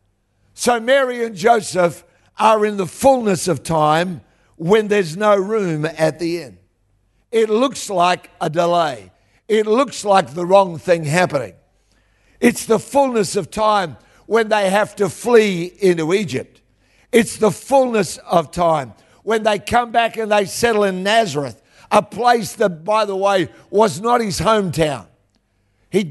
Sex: male